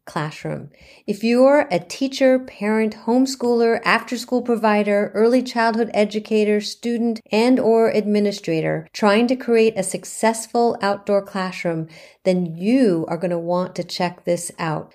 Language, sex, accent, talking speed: English, female, American, 130 wpm